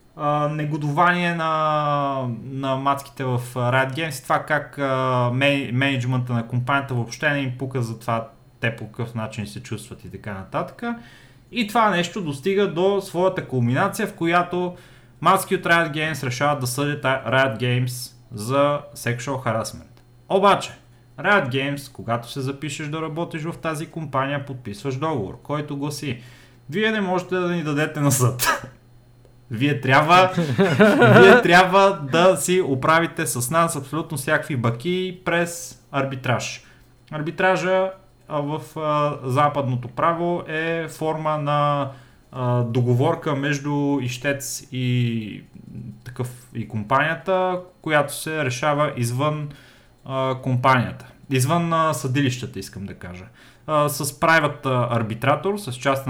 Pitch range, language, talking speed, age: 125-165 Hz, Bulgarian, 130 wpm, 30-49